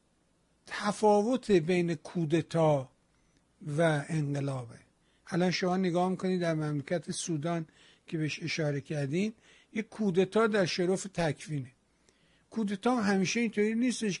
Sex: male